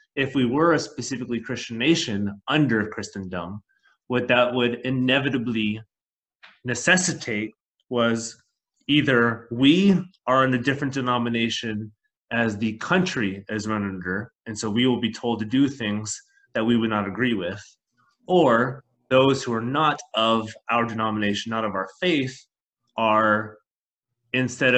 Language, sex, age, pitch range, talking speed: English, male, 30-49, 110-135 Hz, 140 wpm